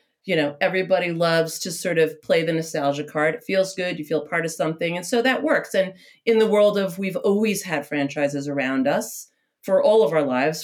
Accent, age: American, 40-59